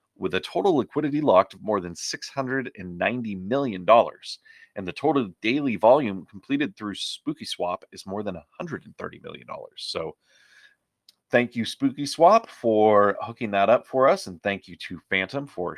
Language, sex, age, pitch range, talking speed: English, male, 30-49, 90-125 Hz, 150 wpm